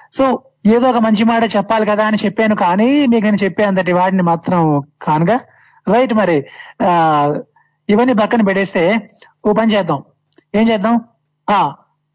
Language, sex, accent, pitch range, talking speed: Telugu, male, native, 180-235 Hz, 140 wpm